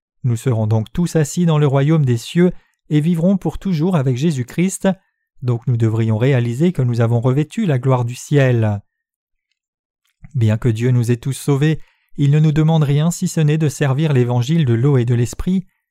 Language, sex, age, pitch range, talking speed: French, male, 40-59, 130-170 Hz, 190 wpm